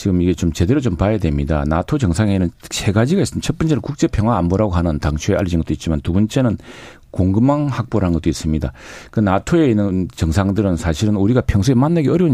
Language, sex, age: Korean, male, 40-59